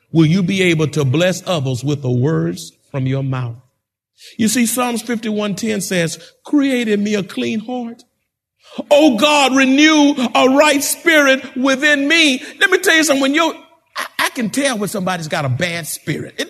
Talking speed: 175 wpm